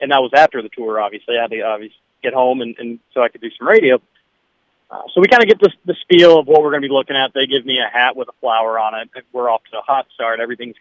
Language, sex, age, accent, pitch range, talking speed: English, male, 40-59, American, 135-170 Hz, 305 wpm